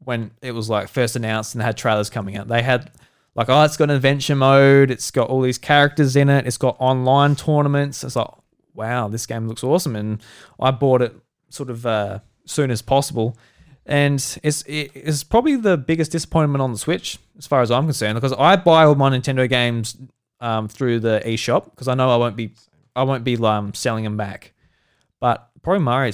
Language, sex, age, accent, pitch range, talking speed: English, male, 20-39, Australian, 115-145 Hz, 210 wpm